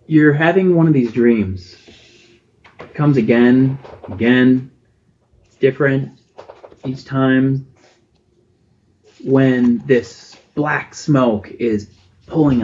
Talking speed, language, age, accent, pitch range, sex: 90 wpm, English, 30-49, American, 105-135 Hz, male